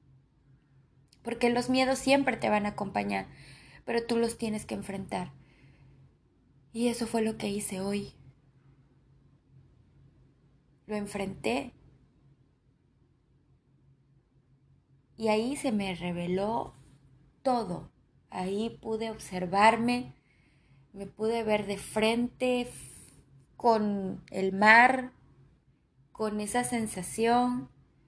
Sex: female